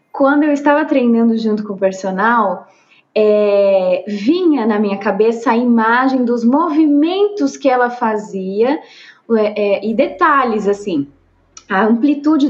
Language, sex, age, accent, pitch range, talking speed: Portuguese, female, 20-39, Brazilian, 215-270 Hz, 115 wpm